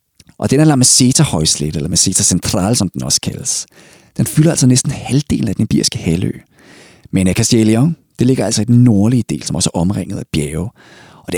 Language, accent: Danish, native